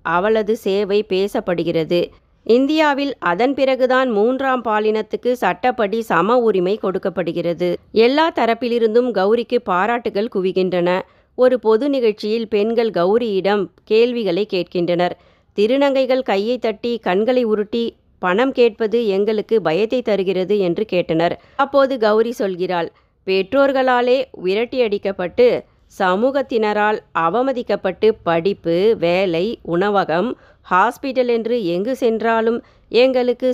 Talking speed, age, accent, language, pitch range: 90 wpm, 30-49, native, Tamil, 185-240 Hz